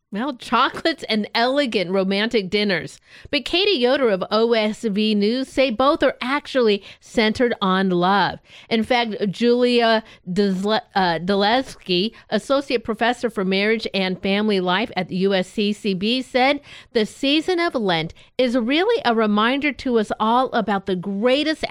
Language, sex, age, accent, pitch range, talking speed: English, female, 50-69, American, 195-255 Hz, 135 wpm